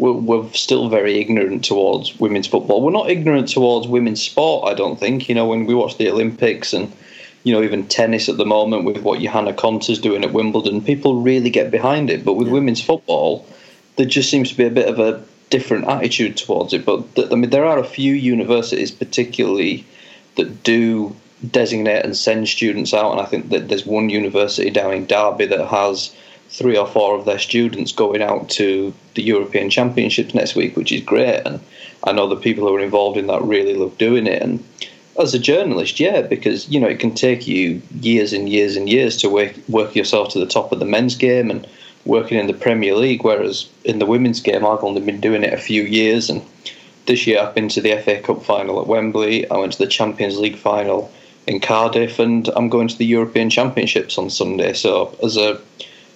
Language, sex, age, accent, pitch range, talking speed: English, male, 30-49, British, 105-120 Hz, 215 wpm